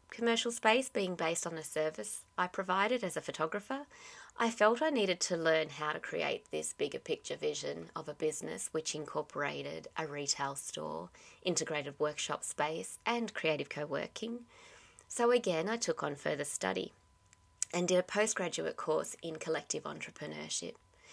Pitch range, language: 155-230 Hz, English